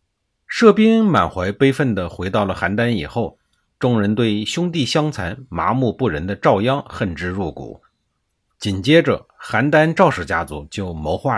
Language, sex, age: Chinese, male, 50-69